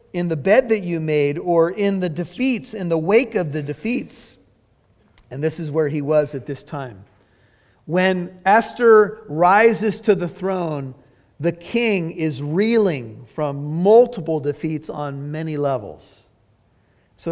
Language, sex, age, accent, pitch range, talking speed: English, male, 50-69, American, 135-175 Hz, 145 wpm